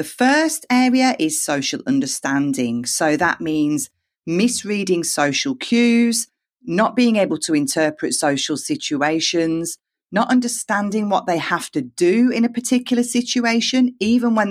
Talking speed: 130 wpm